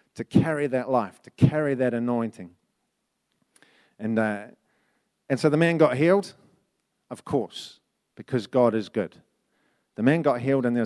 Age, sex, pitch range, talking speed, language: 40-59, male, 110-135 Hz, 155 wpm, English